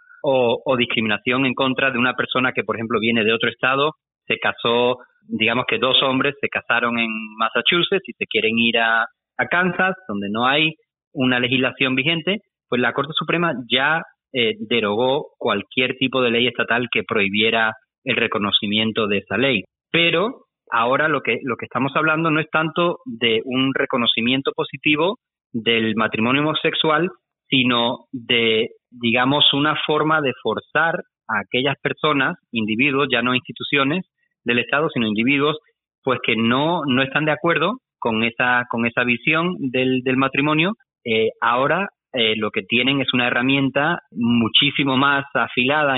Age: 30-49